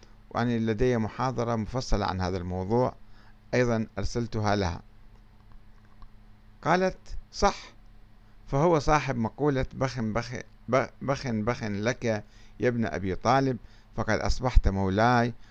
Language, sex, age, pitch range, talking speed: Arabic, male, 50-69, 105-125 Hz, 105 wpm